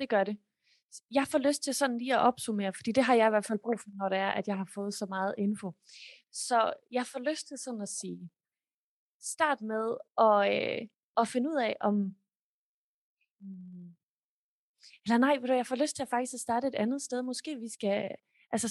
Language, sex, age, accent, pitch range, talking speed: Danish, female, 20-39, native, 205-255 Hz, 210 wpm